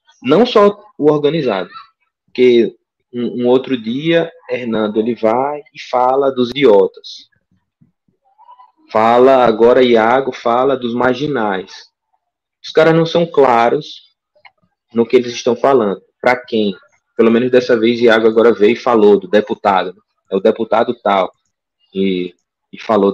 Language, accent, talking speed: Portuguese, Brazilian, 135 wpm